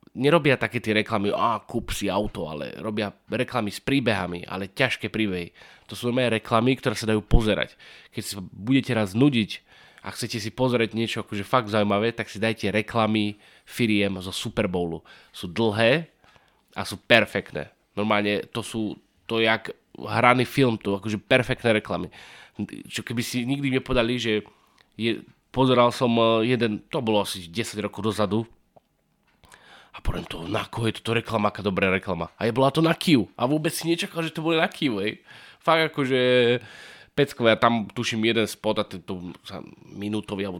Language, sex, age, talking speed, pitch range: Slovak, male, 20-39, 170 wpm, 100-120 Hz